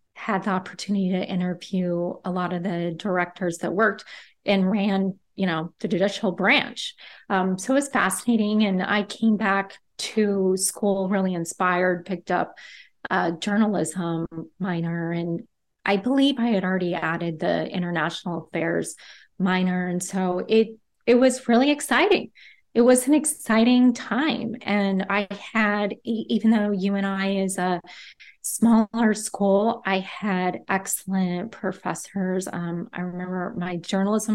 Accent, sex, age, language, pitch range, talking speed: American, female, 20-39, English, 185-220 Hz, 140 wpm